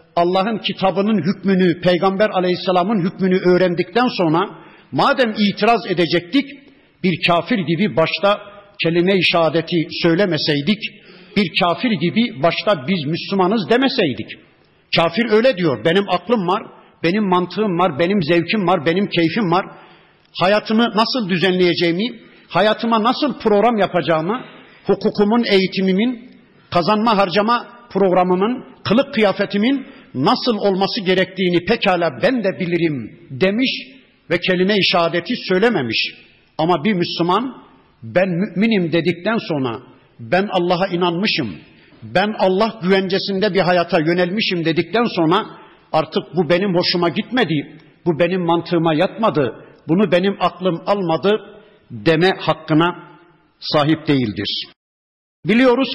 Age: 60-79